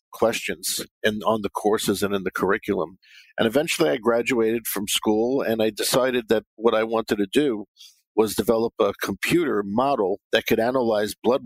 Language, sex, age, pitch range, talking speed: English, male, 50-69, 105-125 Hz, 175 wpm